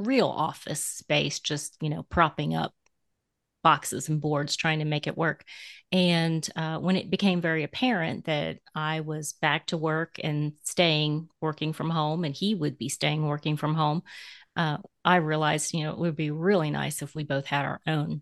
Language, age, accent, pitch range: English, 30-49, American, 150-175 Hz